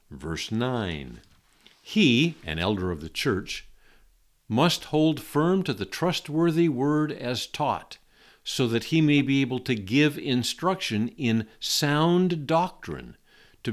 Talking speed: 130 wpm